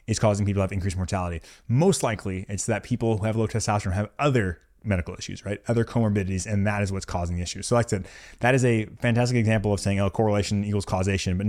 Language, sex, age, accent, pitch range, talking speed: English, male, 20-39, American, 100-125 Hz, 240 wpm